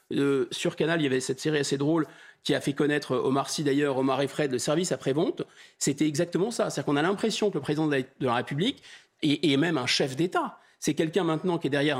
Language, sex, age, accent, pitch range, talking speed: French, male, 30-49, French, 145-195 Hz, 245 wpm